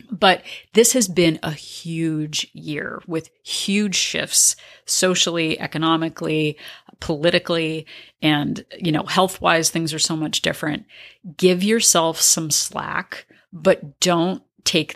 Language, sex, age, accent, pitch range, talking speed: English, female, 30-49, American, 160-180 Hz, 115 wpm